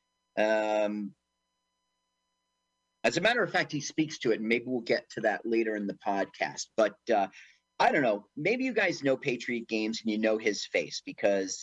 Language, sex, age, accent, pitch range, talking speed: English, male, 40-59, American, 115-170 Hz, 190 wpm